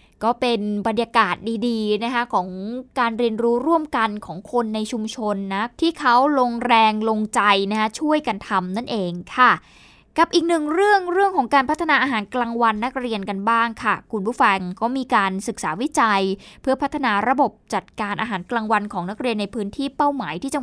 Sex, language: female, Thai